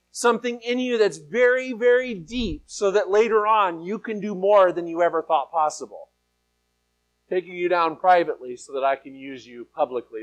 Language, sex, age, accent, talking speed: English, male, 40-59, American, 180 wpm